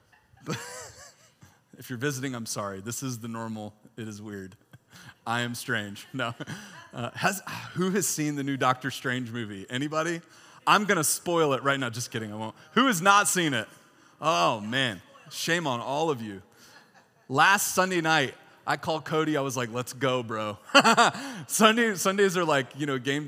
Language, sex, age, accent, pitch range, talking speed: English, male, 30-49, American, 120-190 Hz, 175 wpm